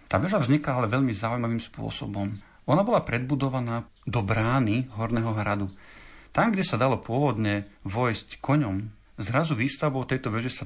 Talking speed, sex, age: 145 wpm, male, 40-59